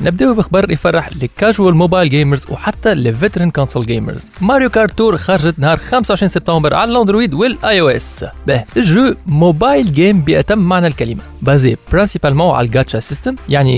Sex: male